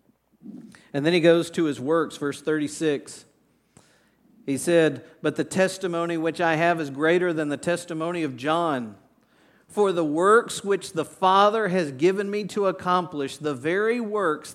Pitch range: 140-170 Hz